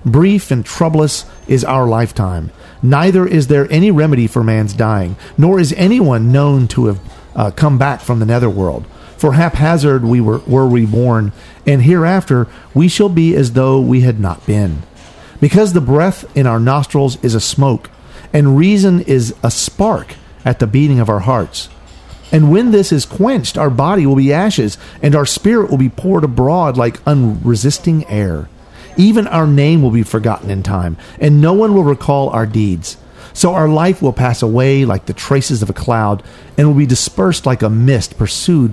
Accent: American